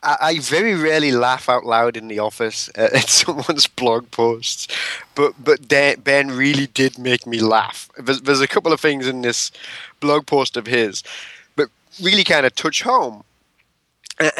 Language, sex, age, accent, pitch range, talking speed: English, male, 20-39, British, 120-145 Hz, 165 wpm